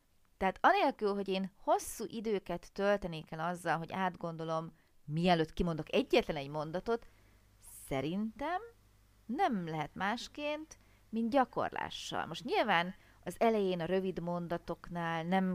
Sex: female